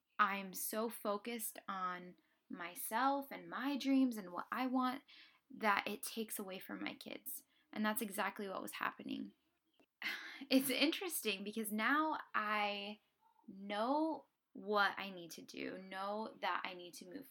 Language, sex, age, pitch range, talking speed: English, female, 10-29, 205-270 Hz, 145 wpm